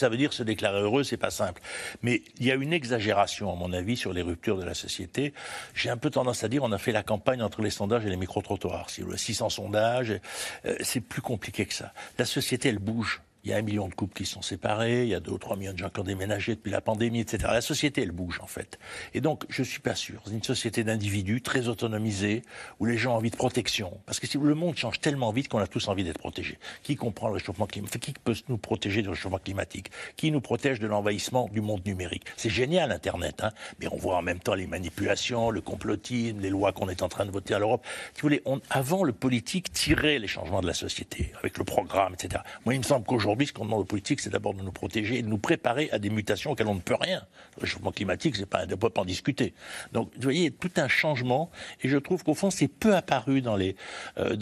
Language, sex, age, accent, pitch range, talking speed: French, male, 60-79, French, 100-130 Hz, 255 wpm